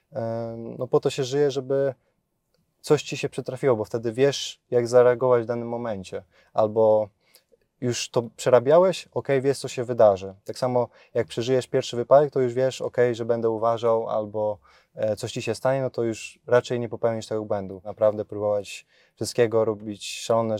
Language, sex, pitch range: Polish, male, 110-130 Hz